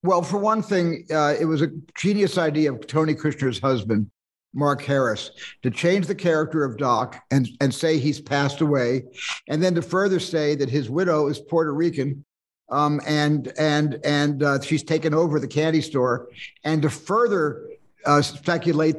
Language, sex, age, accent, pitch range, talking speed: English, male, 60-79, American, 145-180 Hz, 175 wpm